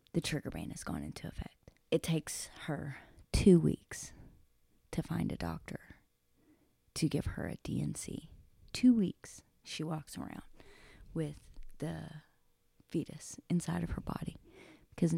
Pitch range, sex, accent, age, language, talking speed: 145-190 Hz, female, American, 30-49, English, 135 wpm